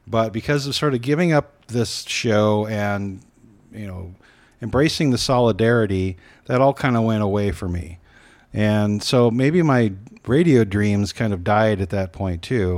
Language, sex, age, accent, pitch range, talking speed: English, male, 40-59, American, 95-125 Hz, 170 wpm